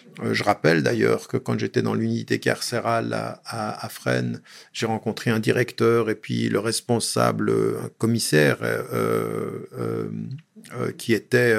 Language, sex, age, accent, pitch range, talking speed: French, male, 50-69, French, 100-120 Hz, 140 wpm